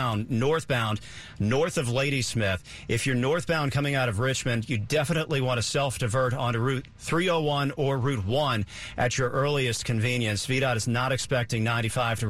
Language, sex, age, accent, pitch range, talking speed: English, male, 50-69, American, 115-135 Hz, 160 wpm